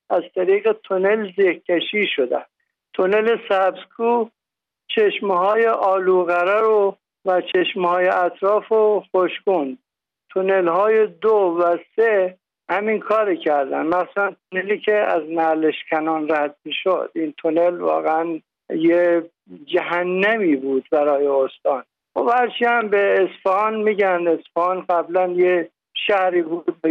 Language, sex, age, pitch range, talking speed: Persian, male, 60-79, 175-210 Hz, 120 wpm